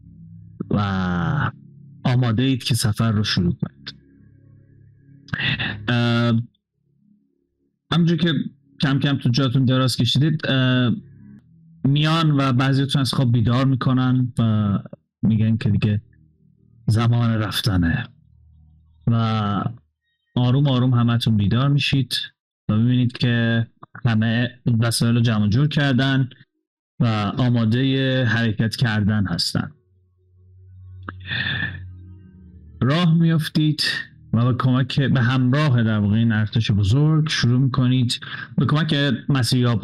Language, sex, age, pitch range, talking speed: Persian, male, 30-49, 105-135 Hz, 100 wpm